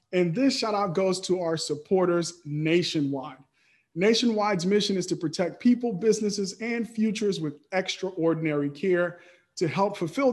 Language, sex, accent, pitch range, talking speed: English, male, American, 160-200 Hz, 140 wpm